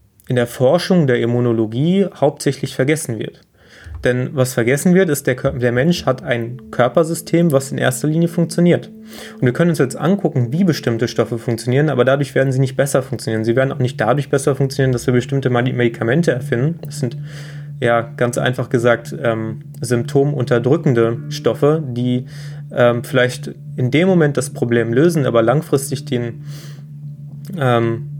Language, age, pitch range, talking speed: German, 20-39, 125-150 Hz, 160 wpm